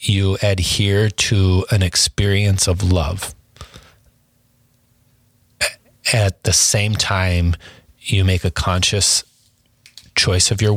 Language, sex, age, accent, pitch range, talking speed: English, male, 30-49, American, 90-115 Hz, 100 wpm